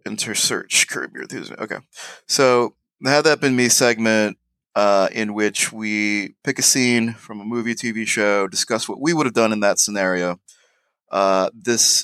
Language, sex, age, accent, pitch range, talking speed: English, male, 30-49, American, 95-125 Hz, 175 wpm